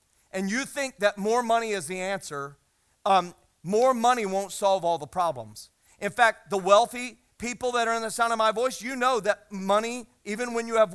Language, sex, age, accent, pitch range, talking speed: English, male, 40-59, American, 175-225 Hz, 210 wpm